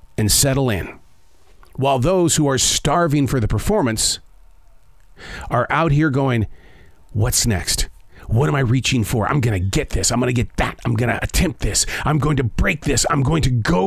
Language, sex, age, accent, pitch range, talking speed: English, male, 40-59, American, 95-150 Hz, 185 wpm